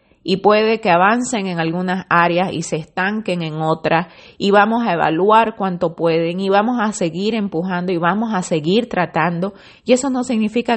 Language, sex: Spanish, female